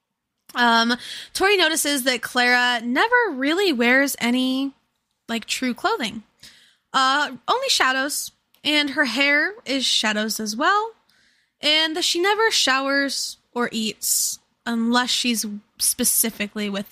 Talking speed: 115 wpm